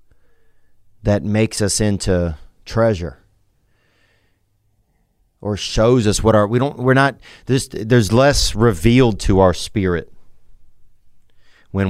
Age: 40-59